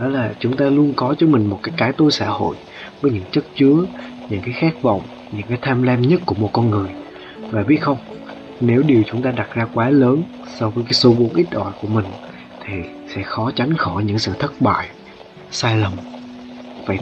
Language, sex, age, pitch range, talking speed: Vietnamese, male, 20-39, 105-140 Hz, 220 wpm